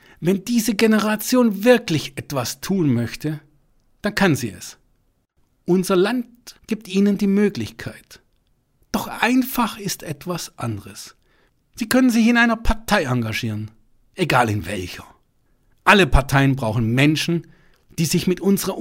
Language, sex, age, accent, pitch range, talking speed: German, male, 60-79, German, 125-200 Hz, 130 wpm